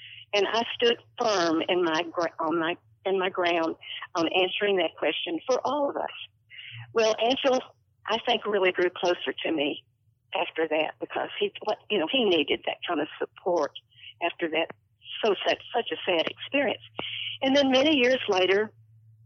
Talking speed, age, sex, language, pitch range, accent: 170 wpm, 50-69, female, English, 160-220 Hz, American